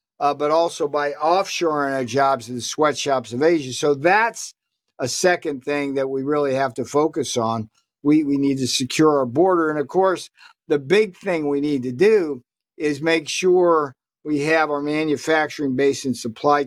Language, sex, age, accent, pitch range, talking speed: English, male, 50-69, American, 130-165 Hz, 180 wpm